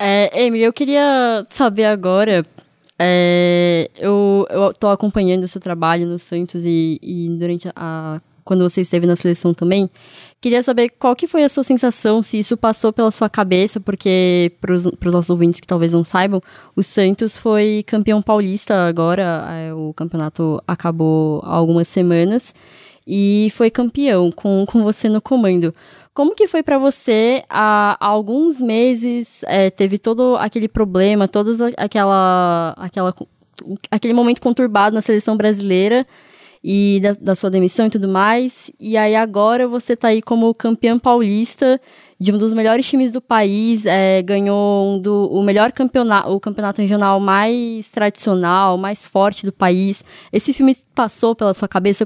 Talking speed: 150 wpm